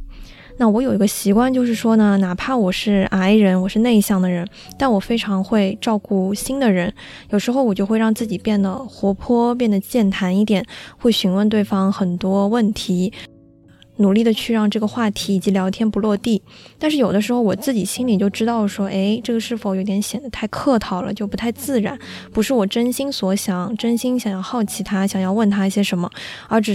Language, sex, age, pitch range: Chinese, female, 20-39, 195-230 Hz